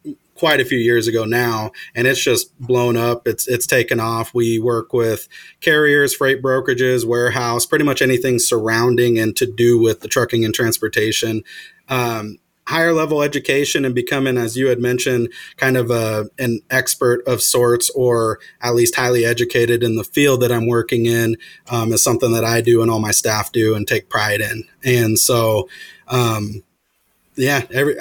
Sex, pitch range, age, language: male, 115-125 Hz, 30-49, English